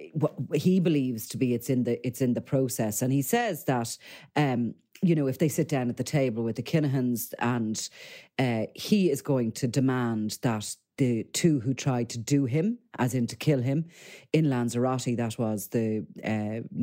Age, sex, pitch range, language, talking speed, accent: 40-59, female, 115-155 Hz, English, 195 wpm, British